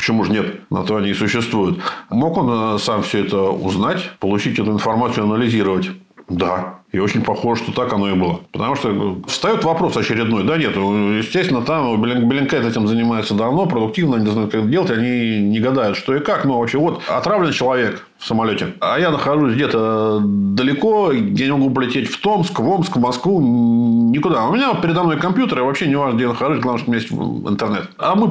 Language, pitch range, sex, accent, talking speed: Russian, 105-160 Hz, male, native, 200 wpm